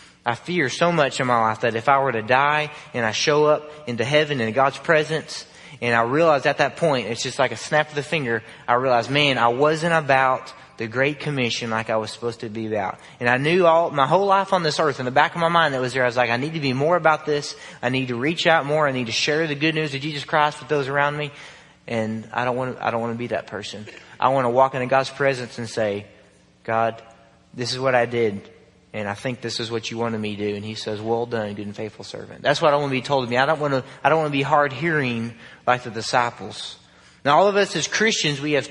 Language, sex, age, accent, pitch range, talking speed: English, male, 30-49, American, 120-150 Hz, 275 wpm